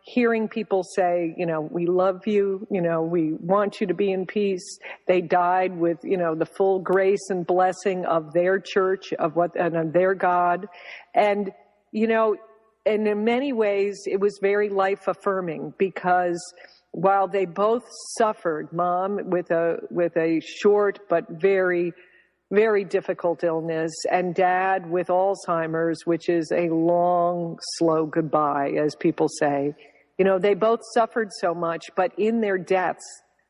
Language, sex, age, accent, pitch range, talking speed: English, female, 50-69, American, 175-195 Hz, 160 wpm